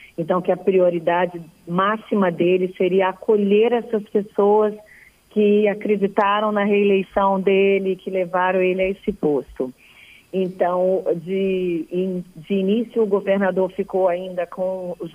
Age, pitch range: 40-59, 185-225 Hz